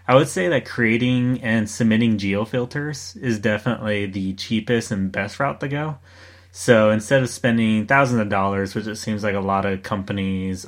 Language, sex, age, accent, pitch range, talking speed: English, male, 20-39, American, 95-110 Hz, 185 wpm